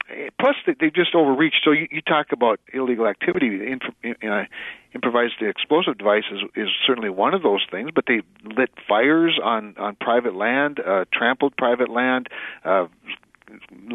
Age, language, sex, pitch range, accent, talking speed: 50-69, English, male, 110-125 Hz, American, 140 wpm